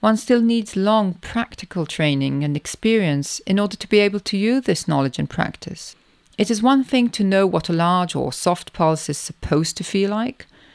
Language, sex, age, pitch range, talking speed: English, female, 40-59, 170-215 Hz, 200 wpm